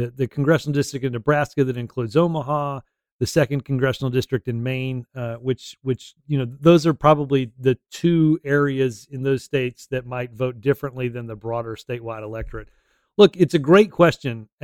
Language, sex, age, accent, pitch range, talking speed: English, male, 40-59, American, 125-150 Hz, 170 wpm